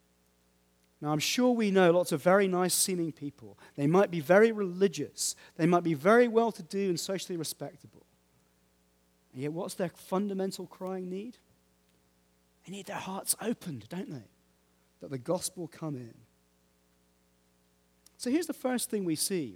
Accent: British